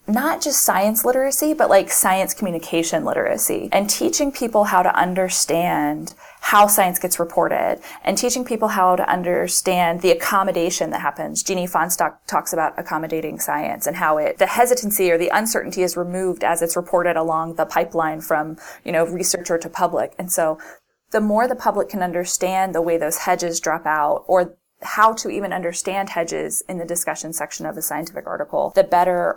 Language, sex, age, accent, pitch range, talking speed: English, female, 20-39, American, 170-215 Hz, 180 wpm